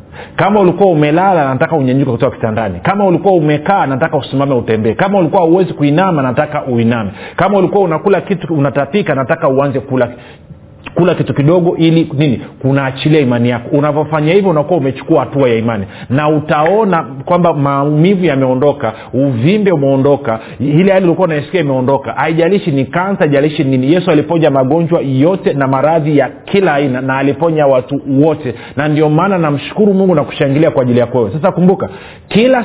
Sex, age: male, 40-59